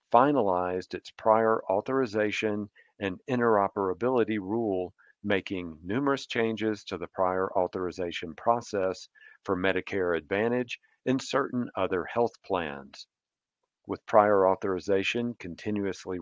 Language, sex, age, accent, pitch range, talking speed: English, male, 50-69, American, 90-115 Hz, 100 wpm